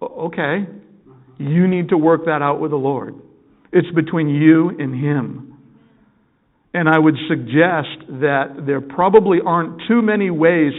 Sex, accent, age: male, American, 50-69